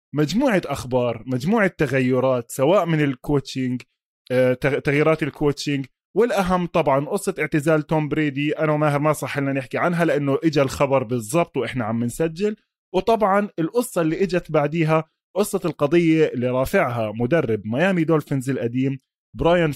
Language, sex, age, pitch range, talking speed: Arabic, male, 20-39, 135-175 Hz, 130 wpm